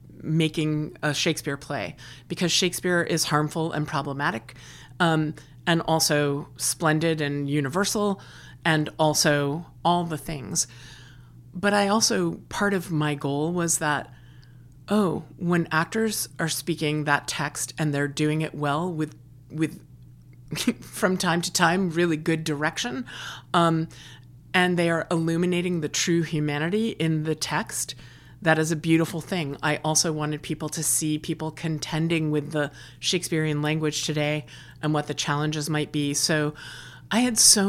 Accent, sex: American, female